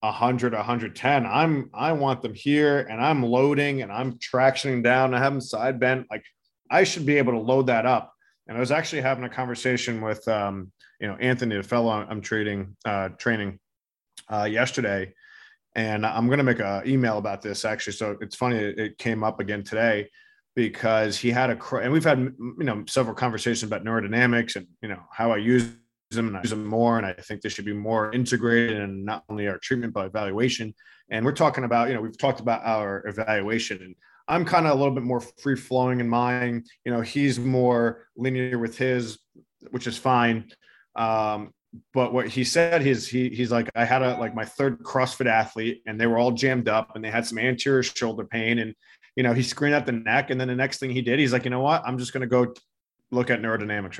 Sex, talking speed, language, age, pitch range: male, 220 wpm, English, 20-39, 110-130 Hz